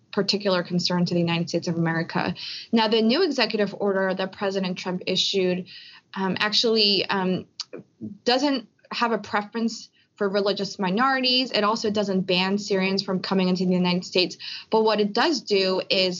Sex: female